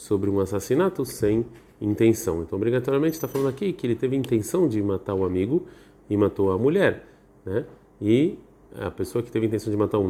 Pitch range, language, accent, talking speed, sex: 95-125 Hz, Portuguese, Brazilian, 190 wpm, male